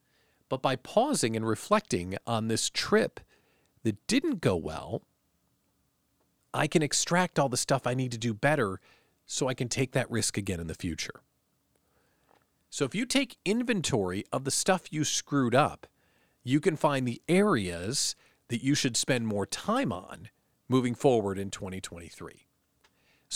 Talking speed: 155 wpm